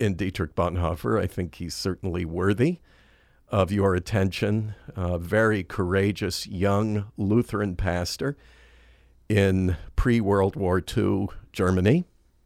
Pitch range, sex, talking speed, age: 85-110 Hz, male, 110 wpm, 50-69